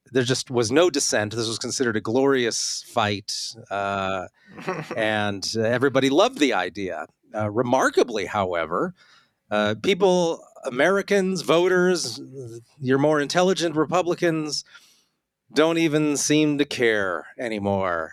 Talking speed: 115 wpm